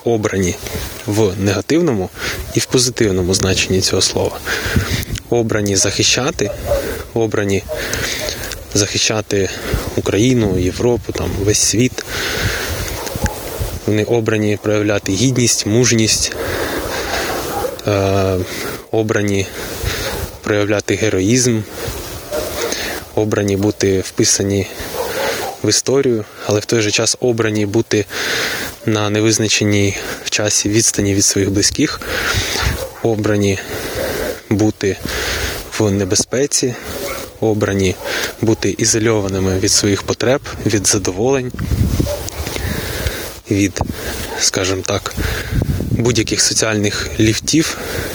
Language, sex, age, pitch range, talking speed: Ukrainian, male, 20-39, 100-115 Hz, 80 wpm